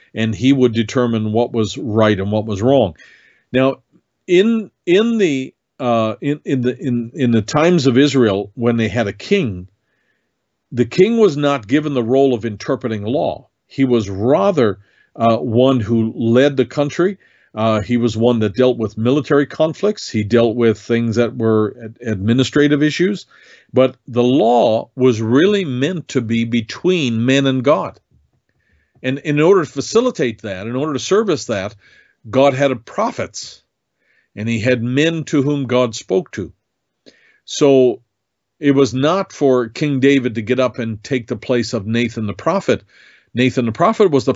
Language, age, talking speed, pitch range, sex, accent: English, 50-69, 170 wpm, 115-145 Hz, male, American